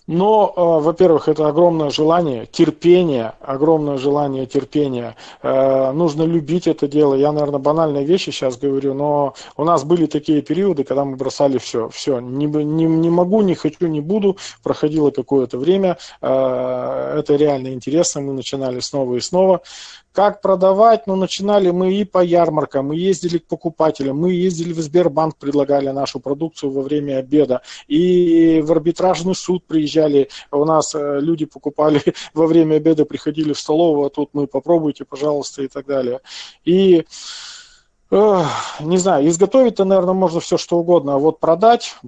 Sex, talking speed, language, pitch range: male, 155 wpm, Russian, 145-175 Hz